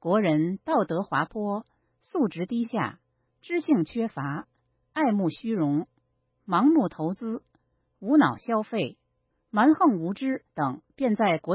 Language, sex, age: Chinese, female, 50-69